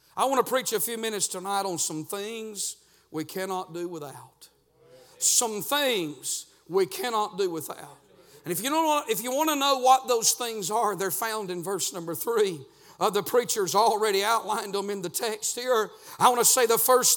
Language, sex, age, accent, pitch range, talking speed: English, male, 50-69, American, 225-280 Hz, 200 wpm